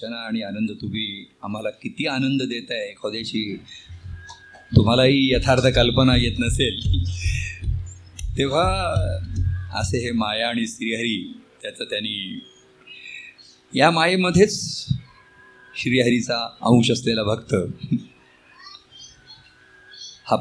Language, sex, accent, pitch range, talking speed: Marathi, male, native, 110-165 Hz, 55 wpm